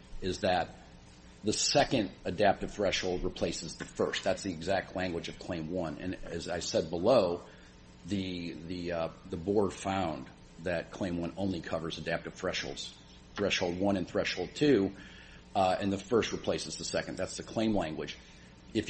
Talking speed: 160 wpm